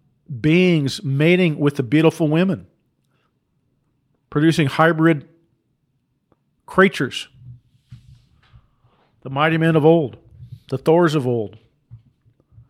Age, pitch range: 50-69, 120-150 Hz